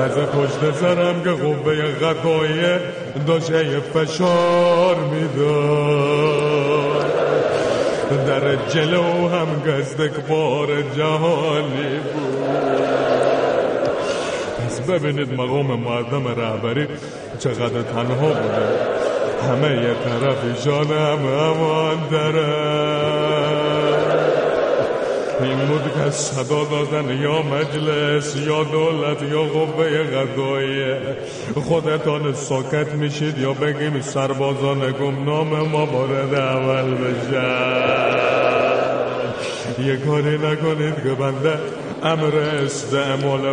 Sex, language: male, Persian